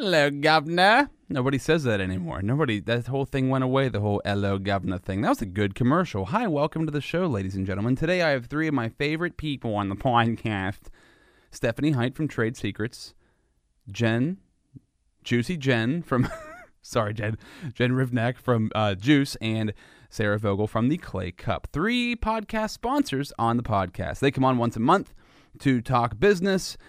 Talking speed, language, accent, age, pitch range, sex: 175 wpm, English, American, 30-49, 105-145 Hz, male